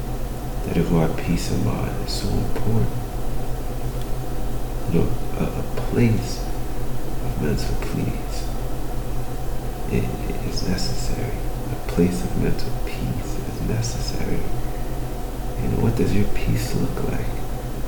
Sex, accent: male, American